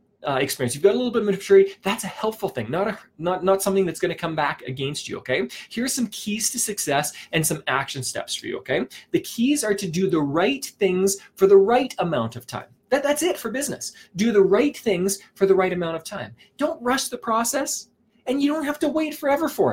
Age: 20-39